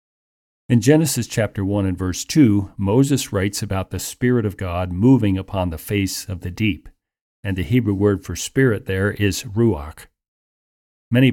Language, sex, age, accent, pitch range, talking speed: English, male, 50-69, American, 95-120 Hz, 165 wpm